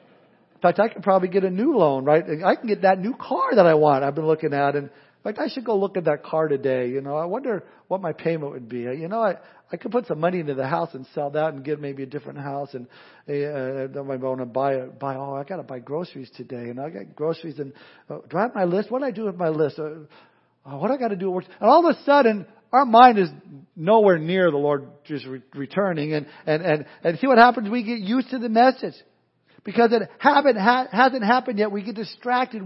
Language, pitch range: English, 150-230 Hz